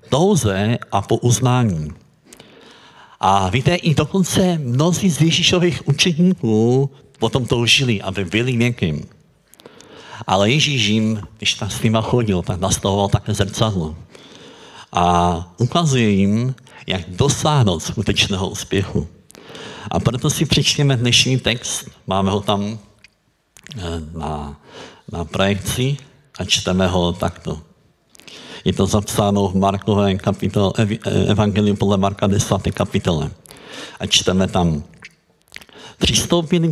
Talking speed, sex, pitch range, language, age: 110 wpm, male, 95-130 Hz, Czech, 60-79